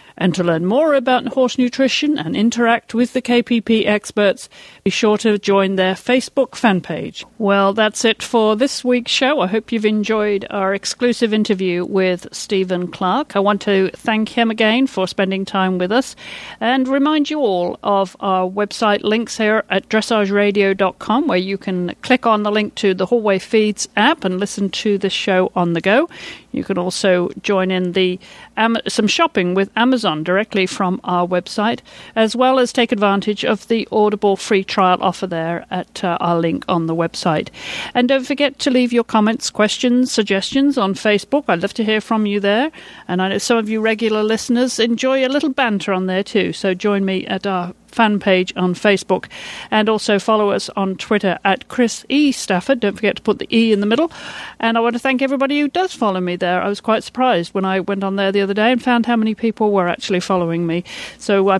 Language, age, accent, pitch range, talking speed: English, 50-69, British, 190-235 Hz, 205 wpm